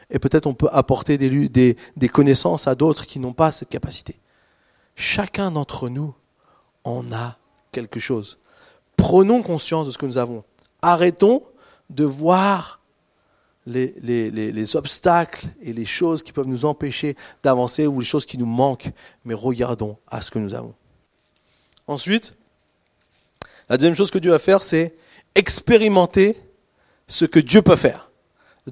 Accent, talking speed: French, 155 wpm